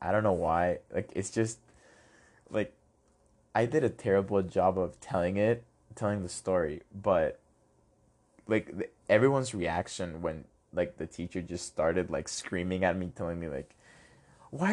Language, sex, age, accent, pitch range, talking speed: English, male, 20-39, American, 90-115 Hz, 150 wpm